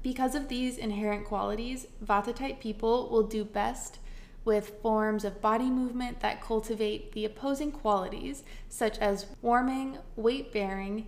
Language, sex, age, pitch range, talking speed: English, female, 20-39, 200-230 Hz, 135 wpm